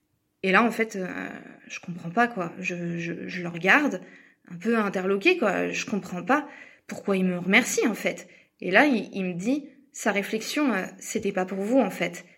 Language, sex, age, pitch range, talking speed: French, female, 20-39, 190-250 Hz, 205 wpm